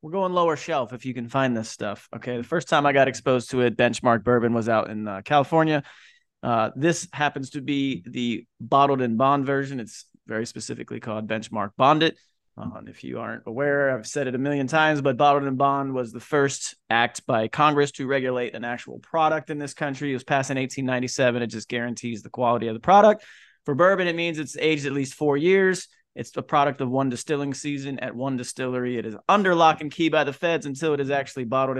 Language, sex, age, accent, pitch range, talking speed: English, male, 30-49, American, 120-145 Hz, 225 wpm